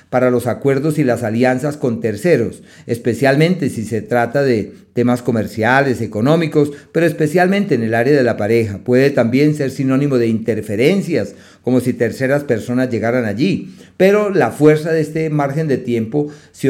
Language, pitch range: Spanish, 120-155 Hz